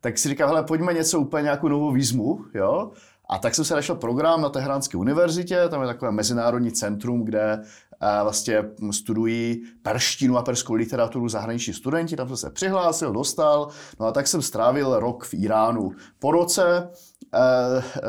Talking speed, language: 170 wpm, Czech